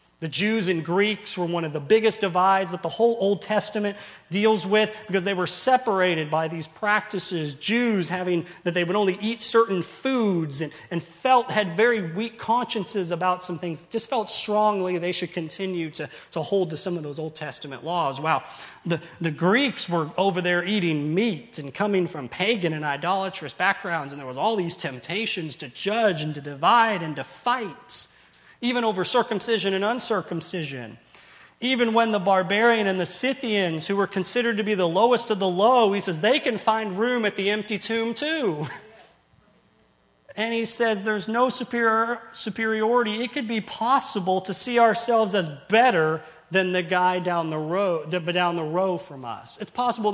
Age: 30-49